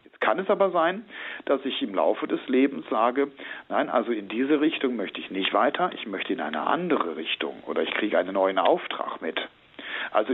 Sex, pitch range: male, 110-165 Hz